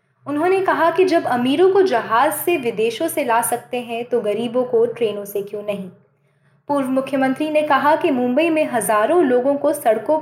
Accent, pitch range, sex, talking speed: native, 215-285 Hz, female, 180 wpm